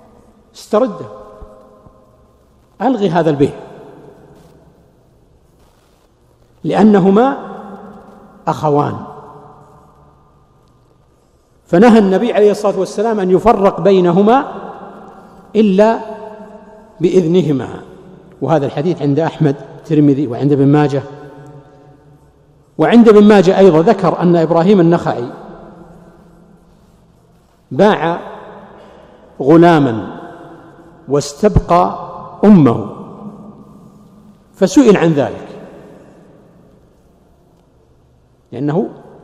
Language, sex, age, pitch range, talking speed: Arabic, male, 60-79, 150-205 Hz, 60 wpm